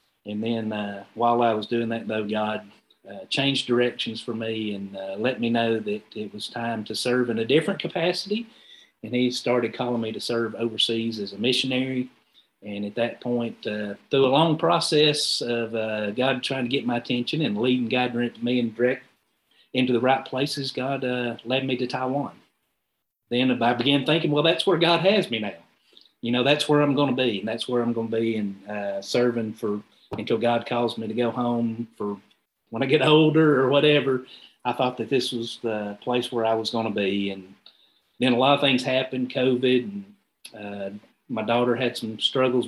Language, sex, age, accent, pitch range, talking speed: English, male, 40-59, American, 115-140 Hz, 205 wpm